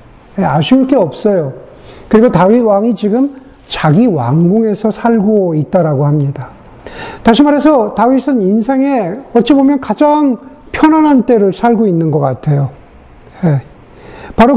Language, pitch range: Korean, 195-255 Hz